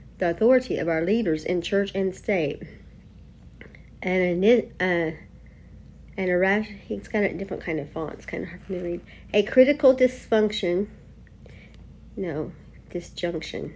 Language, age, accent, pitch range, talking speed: English, 50-69, American, 170-210 Hz, 140 wpm